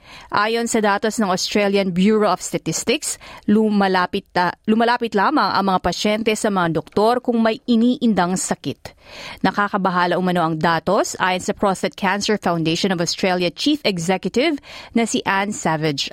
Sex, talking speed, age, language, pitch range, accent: female, 145 wpm, 30-49, Filipino, 175-220 Hz, native